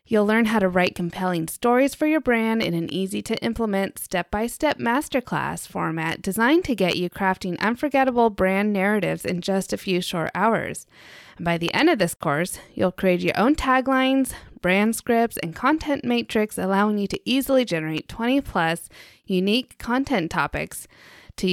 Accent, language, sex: American, English, female